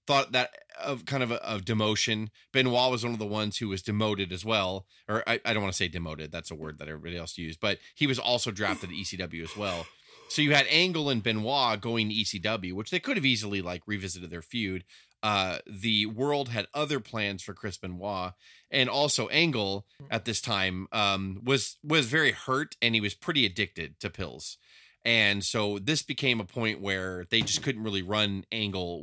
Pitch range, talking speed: 95-125 Hz, 210 wpm